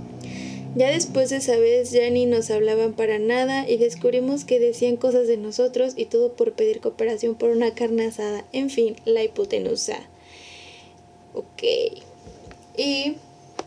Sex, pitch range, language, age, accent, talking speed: female, 225-345 Hz, Spanish, 20-39, Mexican, 145 wpm